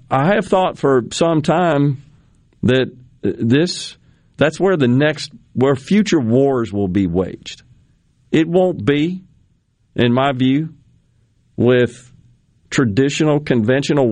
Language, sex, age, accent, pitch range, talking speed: English, male, 50-69, American, 115-140 Hz, 115 wpm